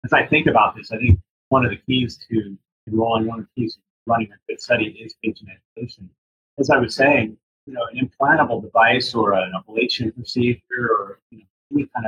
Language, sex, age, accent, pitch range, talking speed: English, male, 30-49, American, 110-130 Hz, 215 wpm